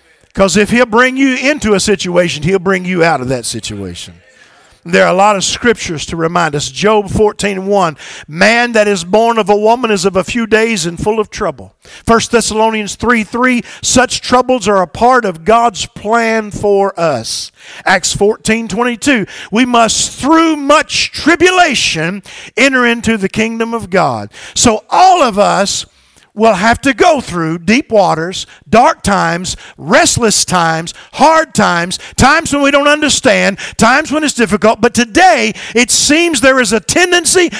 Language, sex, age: English, male, 50-69